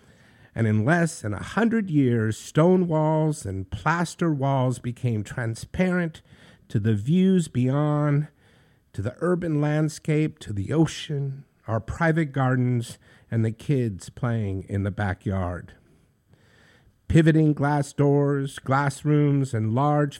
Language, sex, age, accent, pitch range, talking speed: English, male, 50-69, American, 120-165 Hz, 125 wpm